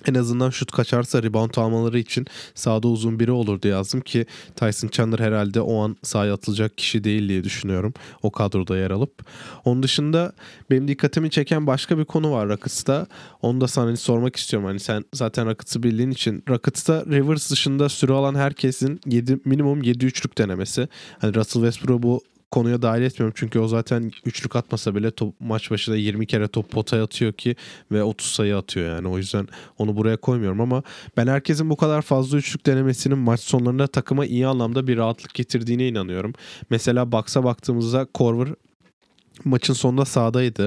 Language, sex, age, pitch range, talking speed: Turkish, male, 20-39, 110-130 Hz, 170 wpm